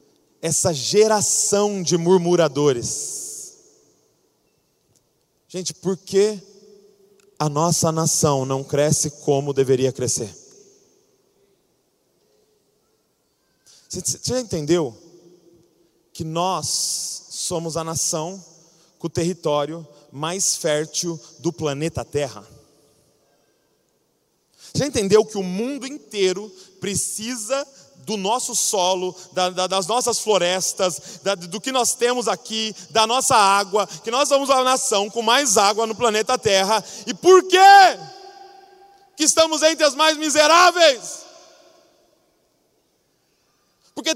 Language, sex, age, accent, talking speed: Portuguese, male, 20-39, Brazilian, 105 wpm